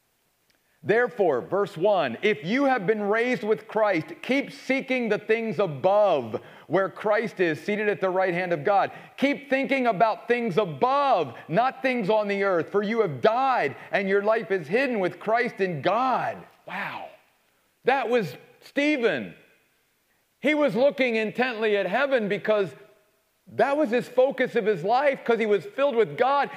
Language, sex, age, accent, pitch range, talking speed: English, male, 40-59, American, 205-265 Hz, 165 wpm